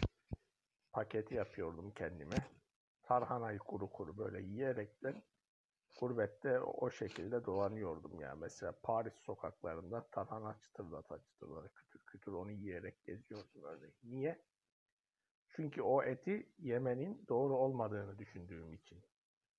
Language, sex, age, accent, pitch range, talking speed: Turkish, male, 60-79, native, 105-135 Hz, 105 wpm